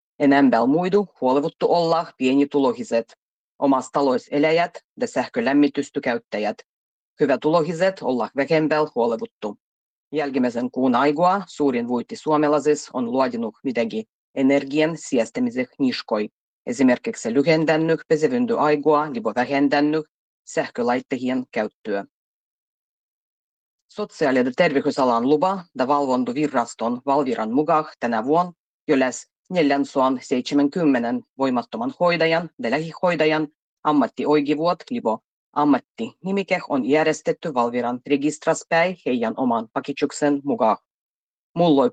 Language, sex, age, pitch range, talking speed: Finnish, female, 30-49, 130-175 Hz, 95 wpm